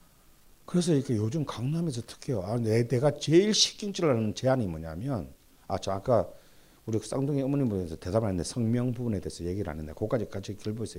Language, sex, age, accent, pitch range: Korean, male, 50-69, native, 80-125 Hz